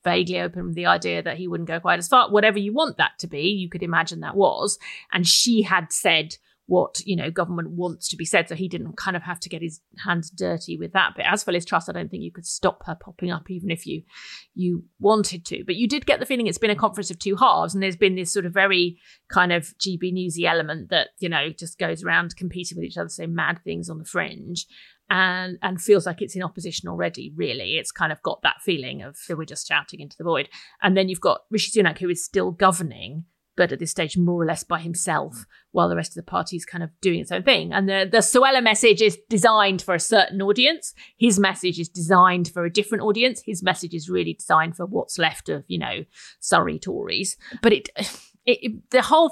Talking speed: 245 wpm